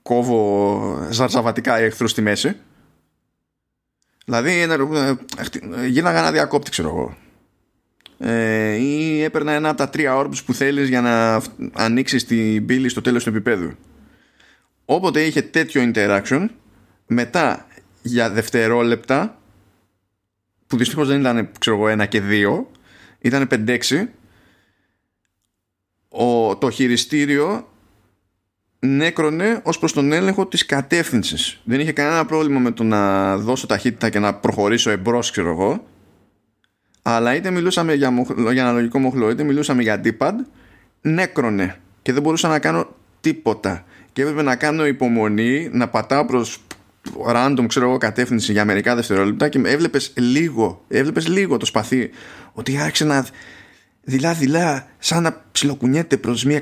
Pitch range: 110-140 Hz